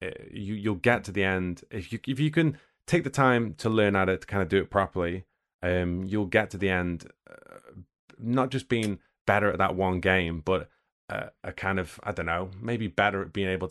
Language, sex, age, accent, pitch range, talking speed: English, male, 30-49, British, 85-100 Hz, 230 wpm